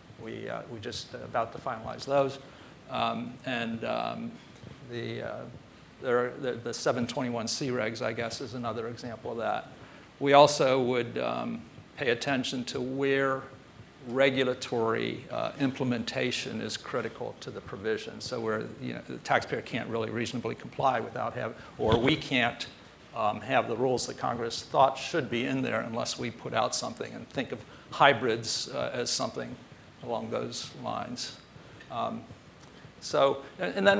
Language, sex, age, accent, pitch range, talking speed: English, male, 50-69, American, 120-140 Hz, 150 wpm